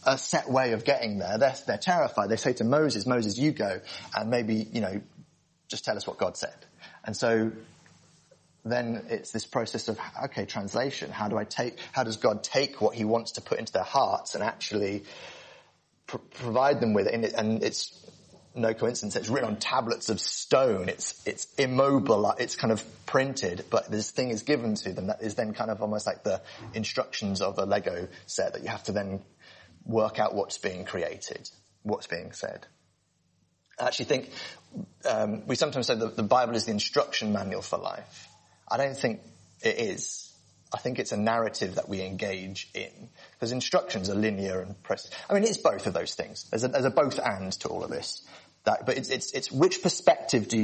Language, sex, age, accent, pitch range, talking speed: English, male, 30-49, British, 100-120 Hz, 200 wpm